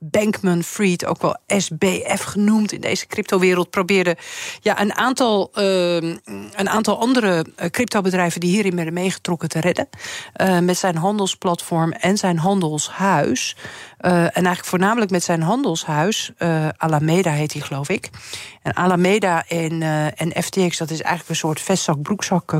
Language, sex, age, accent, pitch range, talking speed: Dutch, female, 50-69, Dutch, 165-200 Hz, 150 wpm